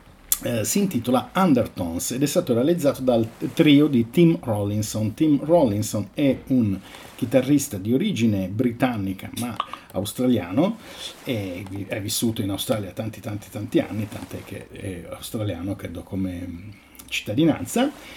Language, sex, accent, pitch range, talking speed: Italian, male, native, 105-135 Hz, 130 wpm